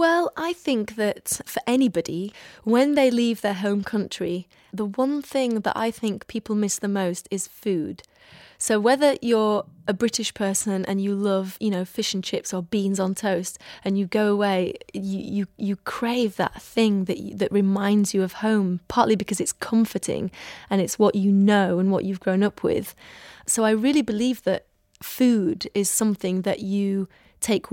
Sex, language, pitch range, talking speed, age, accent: female, English, 195-225 Hz, 180 wpm, 20-39, British